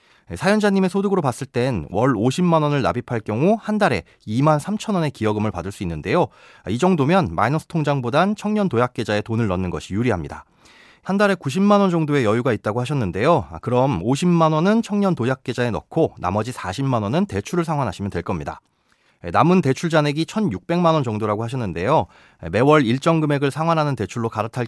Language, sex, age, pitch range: Korean, male, 30-49, 110-165 Hz